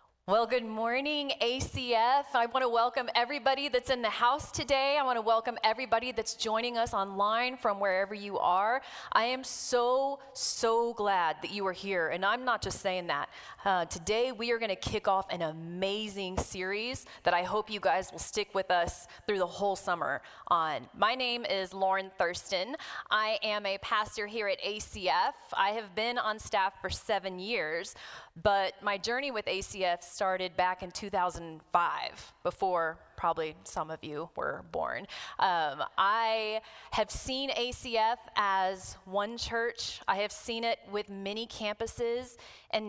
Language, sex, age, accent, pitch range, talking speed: English, female, 30-49, American, 190-235 Hz, 165 wpm